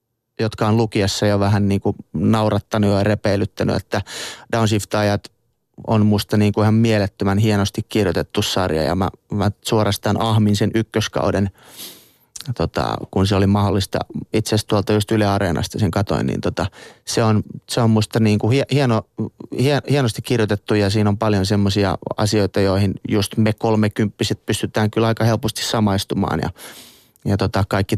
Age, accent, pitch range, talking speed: 30-49, native, 100-110 Hz, 150 wpm